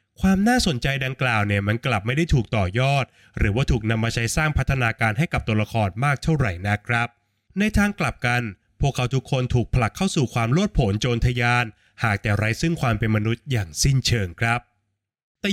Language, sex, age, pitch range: Thai, male, 20-39, 110-155 Hz